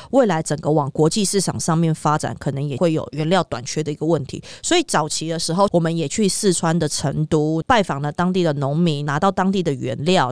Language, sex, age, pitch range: Chinese, female, 20-39, 150-190 Hz